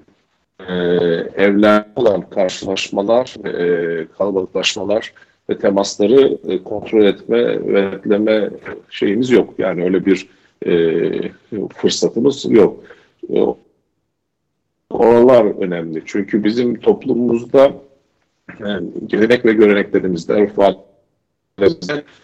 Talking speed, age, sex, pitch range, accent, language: 85 wpm, 50-69, male, 90-110 Hz, native, Turkish